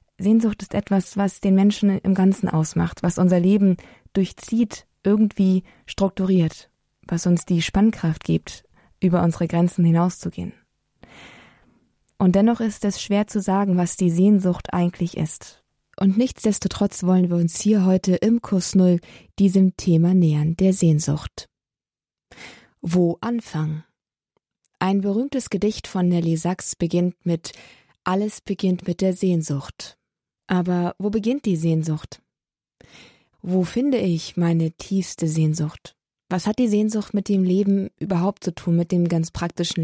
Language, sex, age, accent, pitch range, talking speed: German, female, 20-39, German, 170-200 Hz, 135 wpm